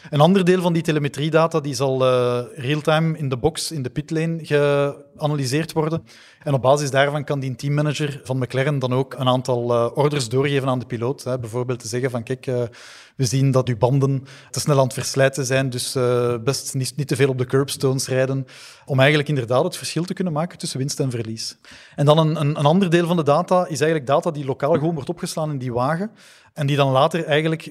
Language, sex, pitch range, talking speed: Dutch, male, 135-160 Hz, 225 wpm